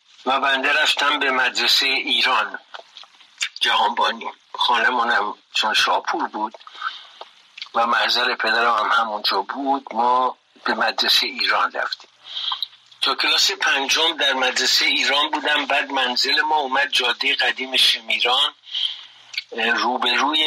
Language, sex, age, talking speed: Persian, male, 60-79, 110 wpm